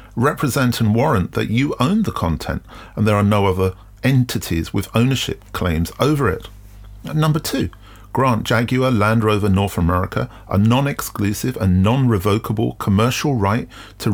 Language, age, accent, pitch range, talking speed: English, 40-59, British, 100-145 Hz, 145 wpm